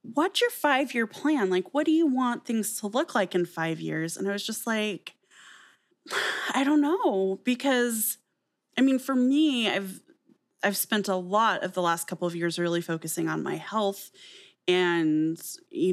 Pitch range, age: 185-260 Hz, 20-39